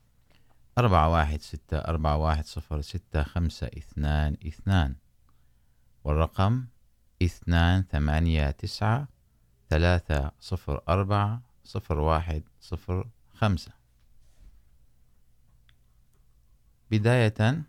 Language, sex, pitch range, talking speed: Urdu, male, 75-95 Hz, 35 wpm